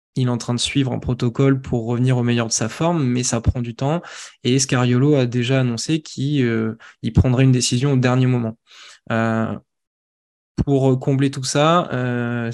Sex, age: male, 20-39